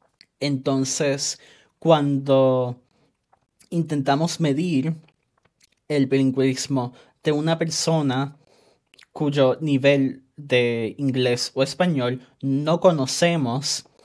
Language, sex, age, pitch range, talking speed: Spanish, male, 20-39, 130-170 Hz, 75 wpm